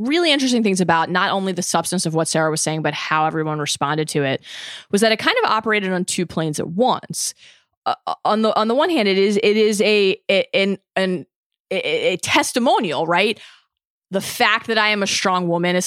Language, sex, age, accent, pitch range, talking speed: English, female, 20-39, American, 160-215 Hz, 220 wpm